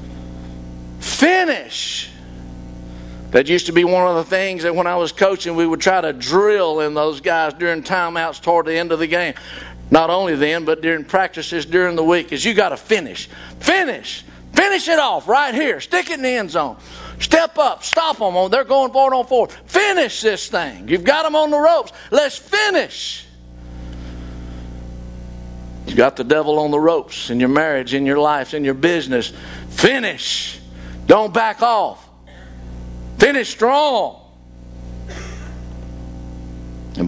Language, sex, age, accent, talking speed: English, male, 50-69, American, 160 wpm